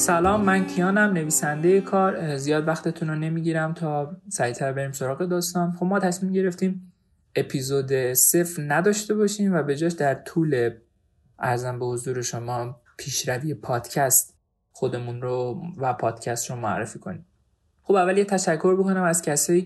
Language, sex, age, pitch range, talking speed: Persian, male, 20-39, 125-175 Hz, 145 wpm